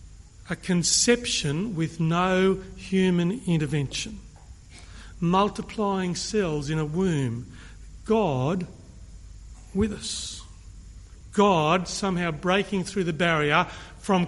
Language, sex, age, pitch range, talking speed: English, male, 40-59, 130-190 Hz, 90 wpm